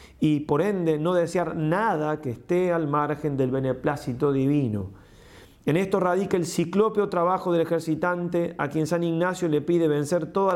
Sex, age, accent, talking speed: male, 30-49, Argentinian, 165 wpm